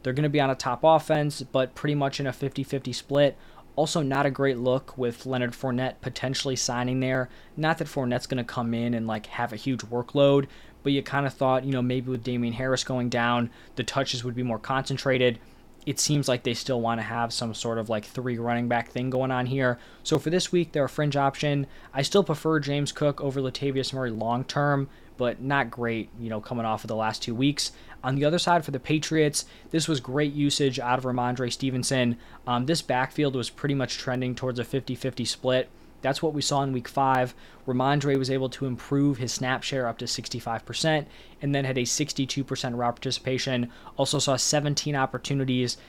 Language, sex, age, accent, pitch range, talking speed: English, male, 20-39, American, 125-140 Hz, 210 wpm